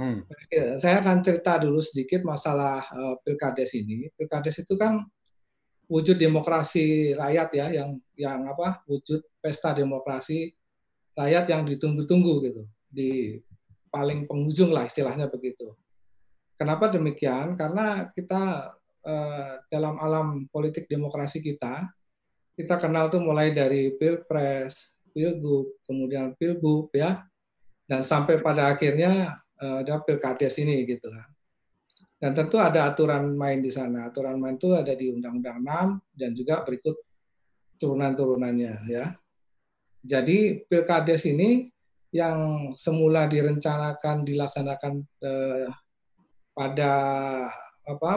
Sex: male